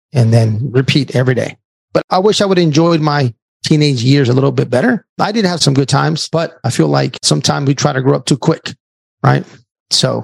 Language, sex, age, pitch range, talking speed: English, male, 30-49, 135-165 Hz, 230 wpm